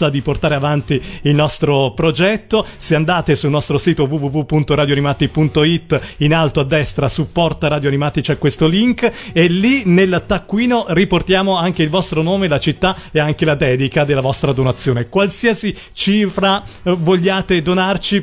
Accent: native